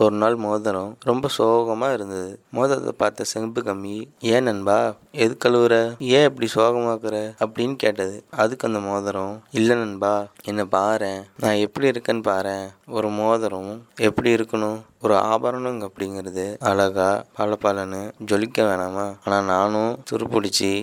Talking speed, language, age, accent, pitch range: 120 wpm, English, 20-39, Indian, 100-115 Hz